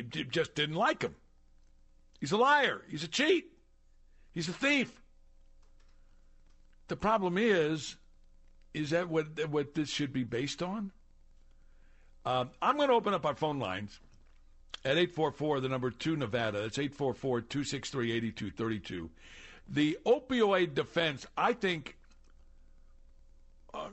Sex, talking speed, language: male, 125 wpm, English